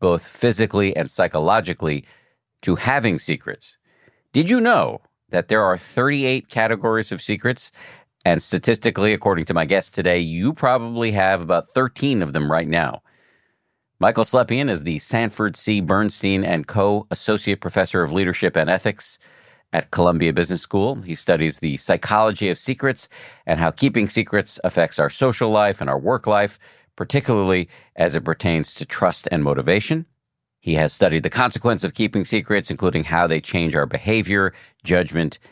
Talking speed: 155 wpm